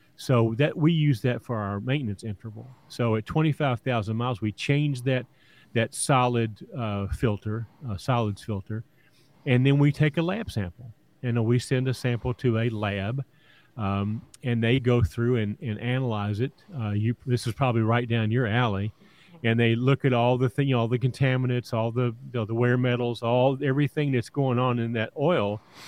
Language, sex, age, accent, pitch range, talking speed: English, male, 40-59, American, 110-135 Hz, 185 wpm